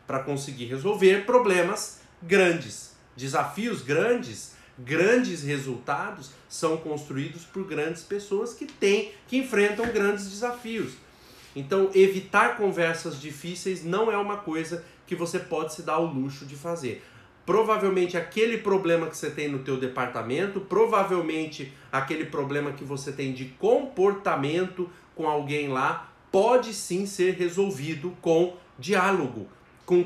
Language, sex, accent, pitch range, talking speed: Portuguese, male, Brazilian, 145-195 Hz, 130 wpm